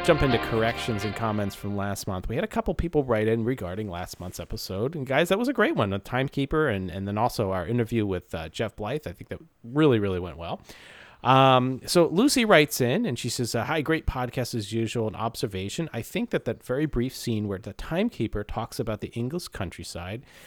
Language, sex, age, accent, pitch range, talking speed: English, male, 30-49, American, 100-130 Hz, 225 wpm